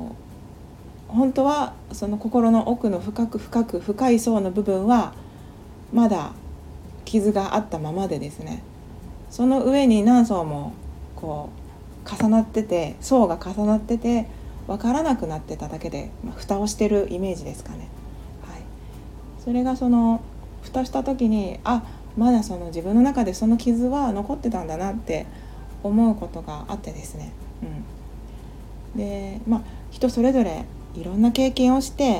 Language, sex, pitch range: Japanese, female, 165-235 Hz